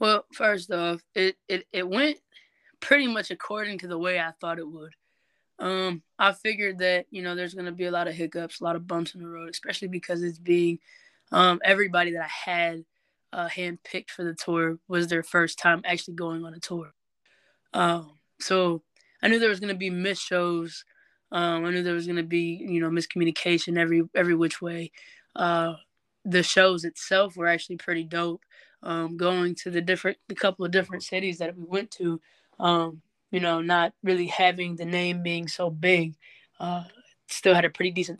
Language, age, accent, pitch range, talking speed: English, 20-39, American, 170-185 Hz, 200 wpm